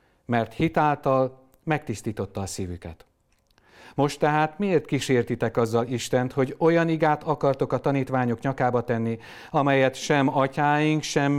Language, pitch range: Hungarian, 115-140 Hz